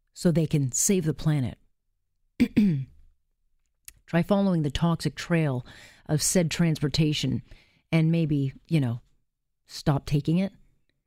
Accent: American